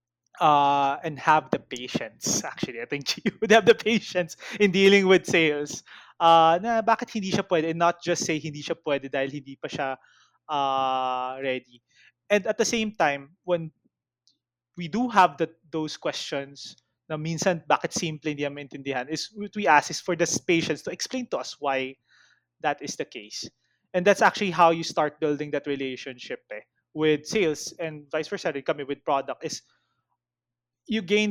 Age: 20-39